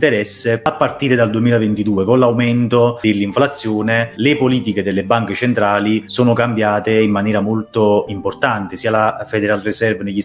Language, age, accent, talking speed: Italian, 30-49, native, 140 wpm